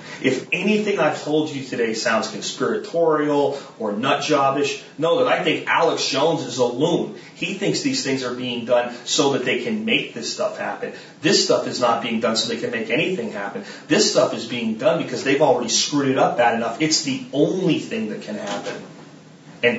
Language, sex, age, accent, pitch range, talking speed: English, male, 30-49, American, 120-180 Hz, 205 wpm